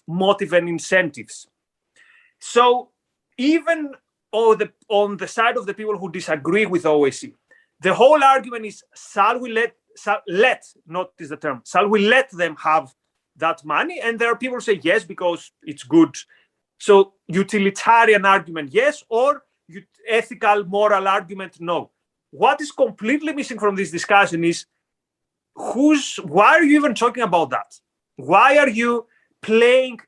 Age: 30-49